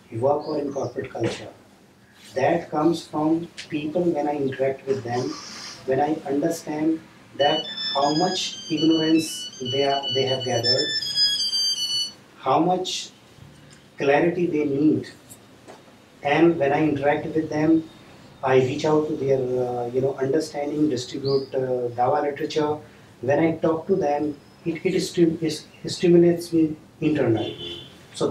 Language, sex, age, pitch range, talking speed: Urdu, male, 30-49, 135-165 Hz, 140 wpm